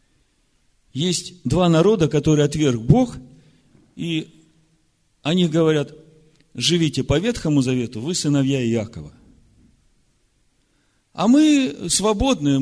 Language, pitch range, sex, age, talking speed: Russian, 130-180 Hz, male, 50-69, 90 wpm